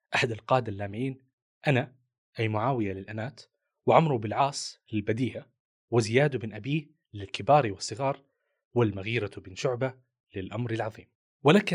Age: 30-49